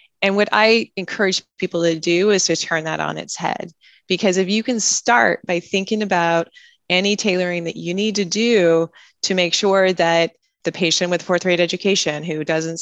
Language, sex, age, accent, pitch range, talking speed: English, female, 20-39, American, 165-190 Hz, 190 wpm